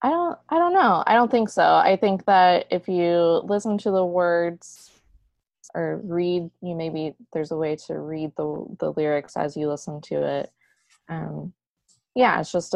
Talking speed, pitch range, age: 185 wpm, 145-175 Hz, 20-39